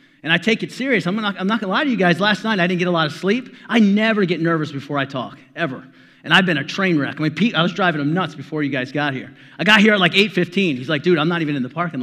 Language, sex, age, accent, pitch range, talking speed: English, male, 30-49, American, 145-185 Hz, 330 wpm